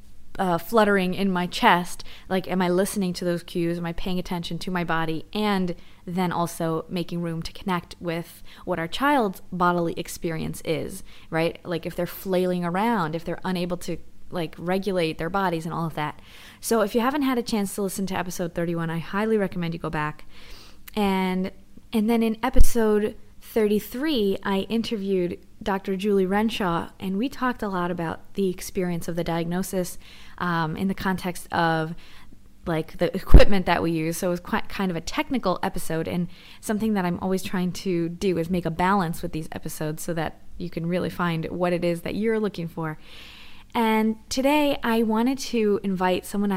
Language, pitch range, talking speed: English, 170-205 Hz, 190 wpm